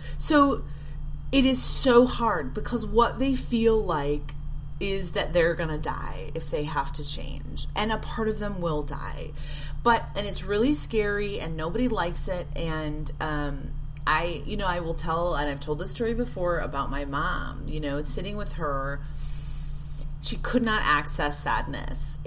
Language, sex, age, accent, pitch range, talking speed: English, female, 30-49, American, 145-180 Hz, 170 wpm